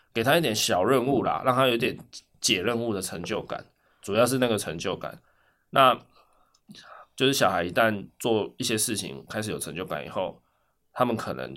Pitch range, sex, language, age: 95-130 Hz, male, Chinese, 20-39